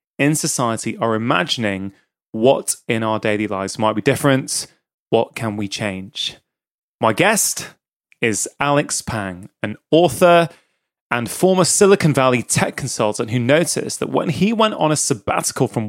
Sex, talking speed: male, 145 wpm